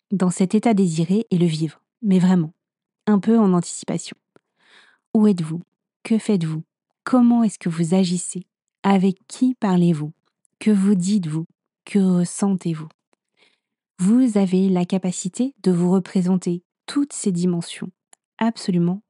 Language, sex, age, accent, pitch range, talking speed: French, female, 30-49, French, 180-220 Hz, 130 wpm